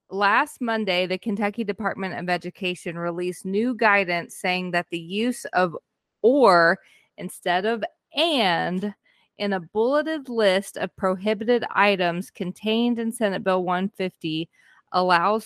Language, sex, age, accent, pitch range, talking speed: English, female, 20-39, American, 175-210 Hz, 125 wpm